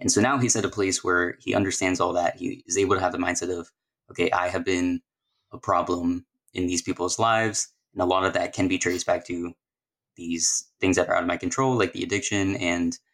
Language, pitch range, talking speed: English, 90-110 Hz, 235 wpm